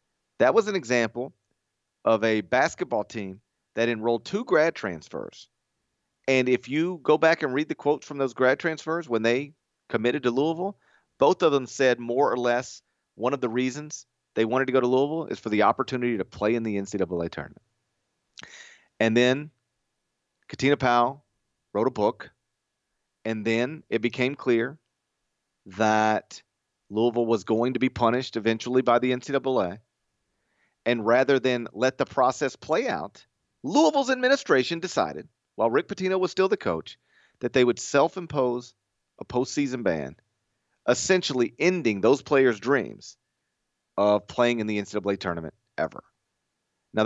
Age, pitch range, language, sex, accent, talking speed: 40-59, 115-140 Hz, English, male, American, 150 wpm